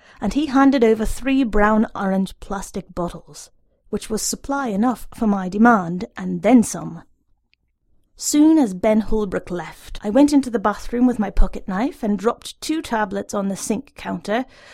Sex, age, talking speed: female, 30-49, 165 wpm